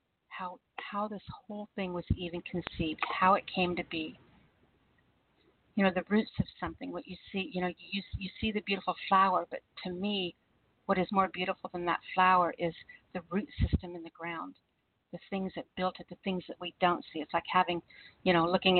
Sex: female